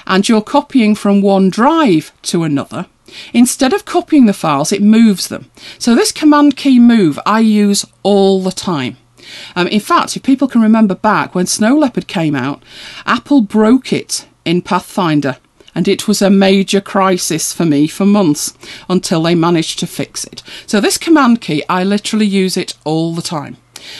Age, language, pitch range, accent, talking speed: 40-59, English, 175-255 Hz, British, 180 wpm